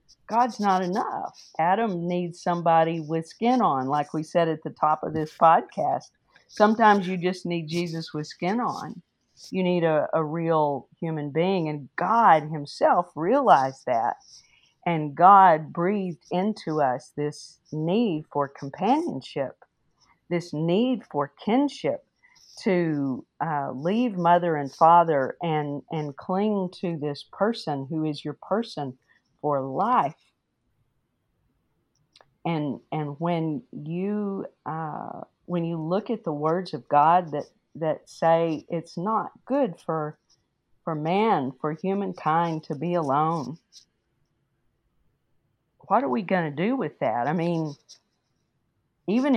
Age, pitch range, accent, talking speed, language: 50-69, 150-190 Hz, American, 130 wpm, English